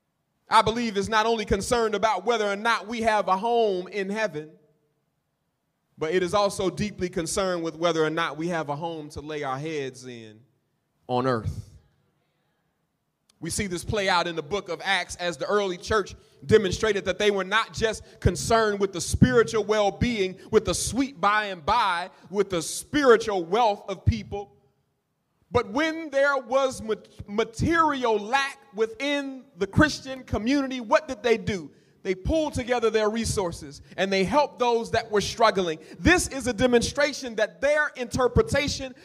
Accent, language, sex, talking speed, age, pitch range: American, English, male, 165 wpm, 30-49, 180-245 Hz